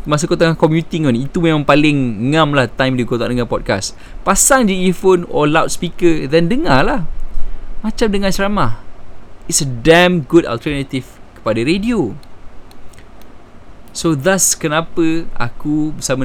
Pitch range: 120-160 Hz